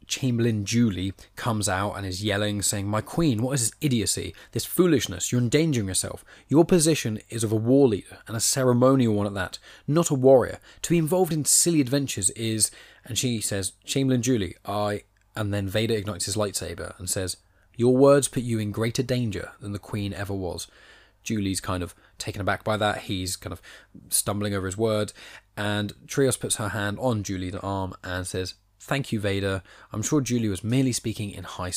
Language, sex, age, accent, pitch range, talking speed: English, male, 20-39, British, 95-120 Hz, 195 wpm